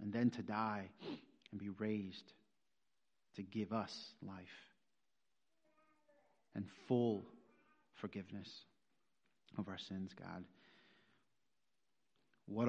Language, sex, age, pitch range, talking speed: English, male, 40-59, 95-115 Hz, 90 wpm